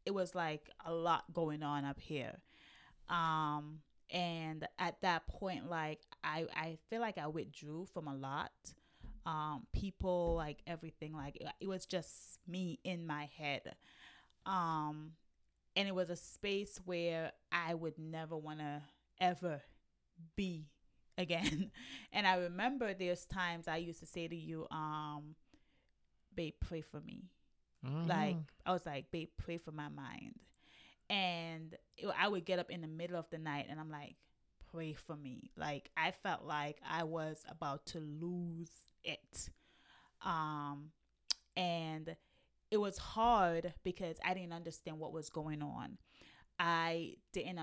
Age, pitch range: 20-39, 150-175 Hz